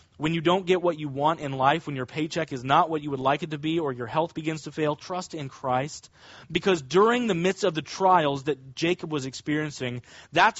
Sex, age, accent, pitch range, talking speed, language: male, 30-49, American, 140-180 Hz, 240 wpm, English